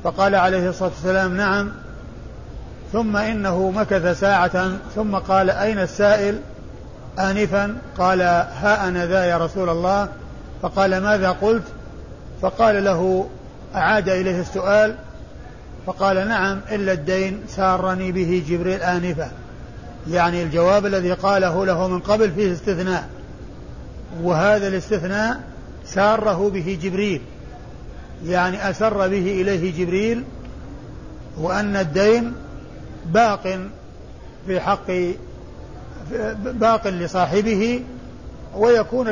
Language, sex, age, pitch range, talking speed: Arabic, male, 50-69, 180-205 Hz, 100 wpm